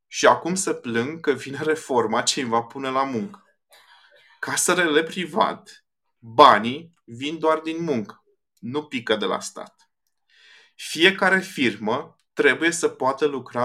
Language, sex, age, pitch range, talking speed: Romanian, male, 20-39, 120-150 Hz, 145 wpm